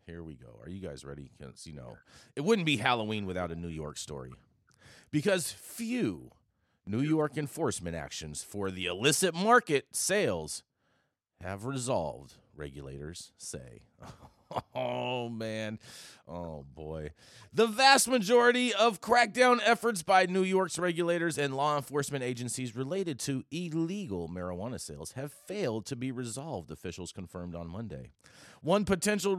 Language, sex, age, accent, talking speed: English, male, 30-49, American, 140 wpm